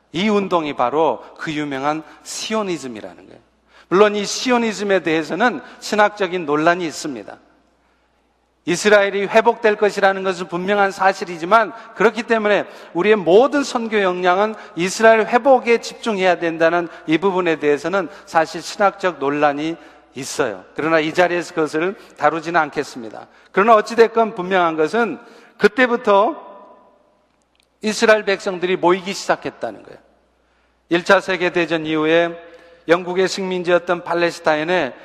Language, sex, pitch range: Korean, male, 170-210 Hz